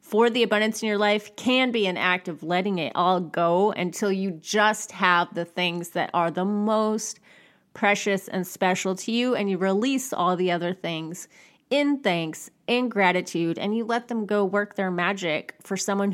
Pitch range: 180-245 Hz